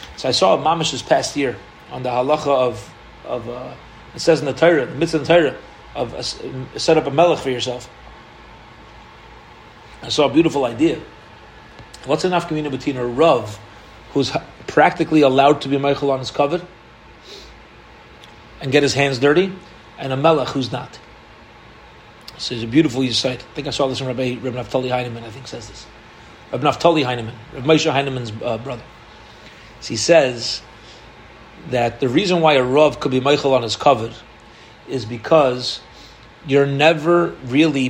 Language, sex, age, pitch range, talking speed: English, male, 30-49, 125-160 Hz, 170 wpm